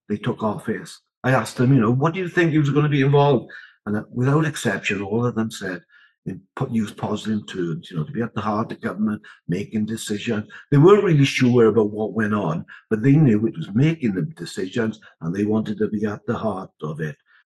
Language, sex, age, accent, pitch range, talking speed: English, male, 60-79, British, 110-140 Hz, 235 wpm